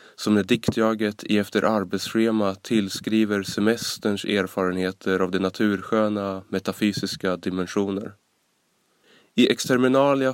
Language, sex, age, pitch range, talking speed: Swedish, male, 20-39, 95-110 Hz, 85 wpm